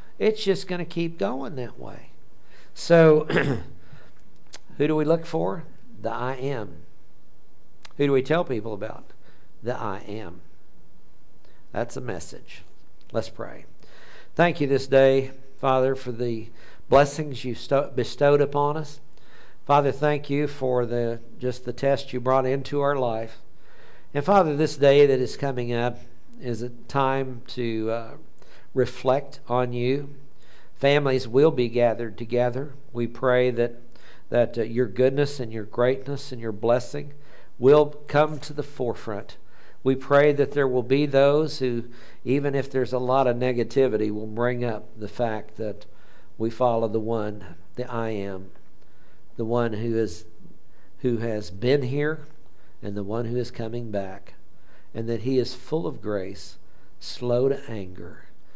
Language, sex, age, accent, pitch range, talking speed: English, male, 60-79, American, 115-140 Hz, 150 wpm